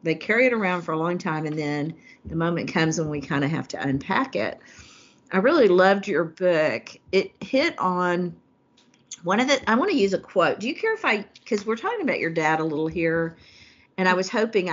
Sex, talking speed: female, 230 wpm